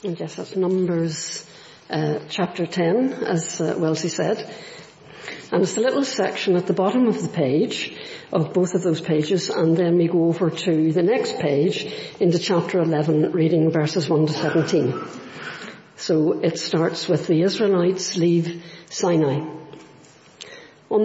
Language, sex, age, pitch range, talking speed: English, female, 60-79, 165-210 Hz, 150 wpm